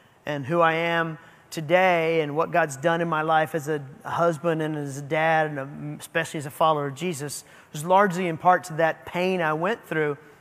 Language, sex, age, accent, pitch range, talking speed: English, male, 30-49, American, 165-225 Hz, 210 wpm